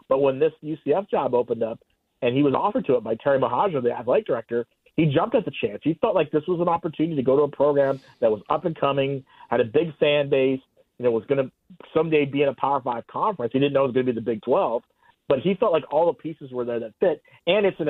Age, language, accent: 40-59, English, American